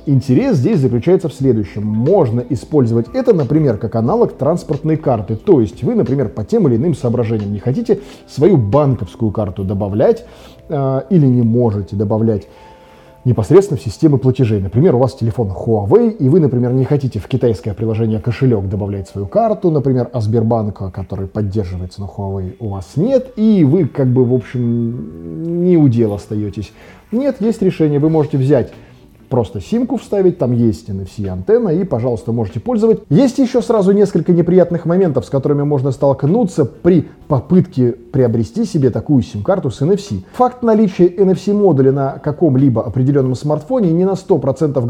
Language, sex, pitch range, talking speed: Russian, male, 115-165 Hz, 160 wpm